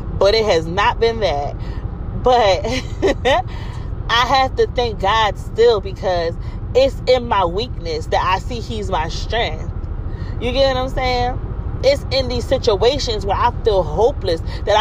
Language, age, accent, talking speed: English, 30-49, American, 155 wpm